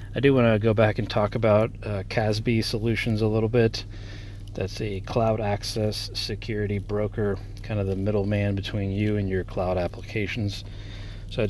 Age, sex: 30-49, male